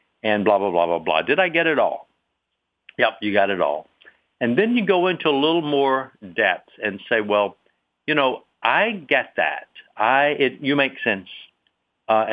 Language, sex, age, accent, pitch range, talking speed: English, male, 60-79, American, 100-135 Hz, 190 wpm